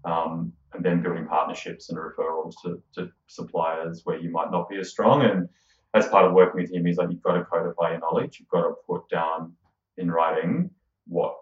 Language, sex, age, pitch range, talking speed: English, male, 20-39, 85-95 Hz, 210 wpm